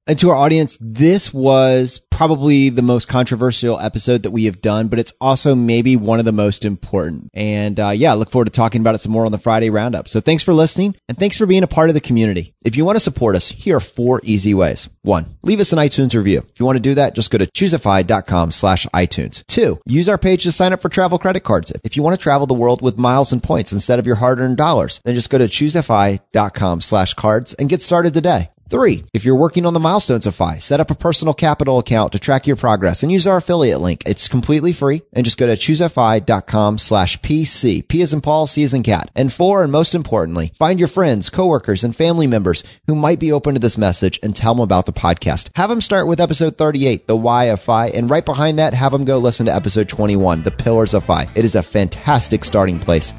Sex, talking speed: male, 245 wpm